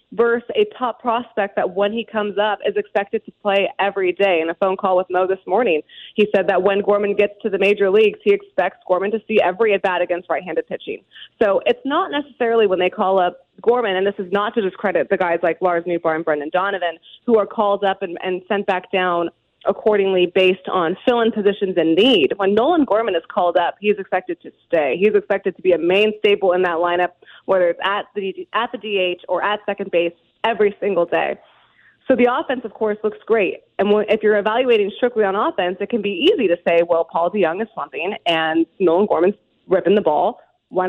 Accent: American